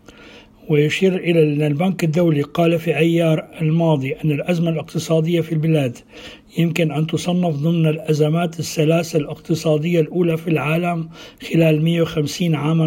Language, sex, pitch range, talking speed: Arabic, male, 155-175 Hz, 120 wpm